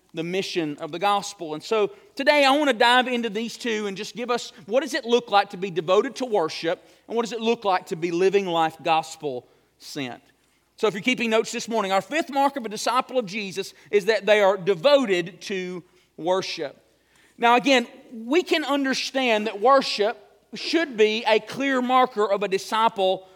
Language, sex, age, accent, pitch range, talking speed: English, male, 40-59, American, 210-275 Hz, 200 wpm